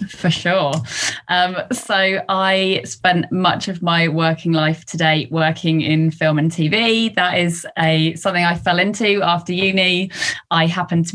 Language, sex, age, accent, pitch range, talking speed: English, female, 20-39, British, 160-180 Hz, 155 wpm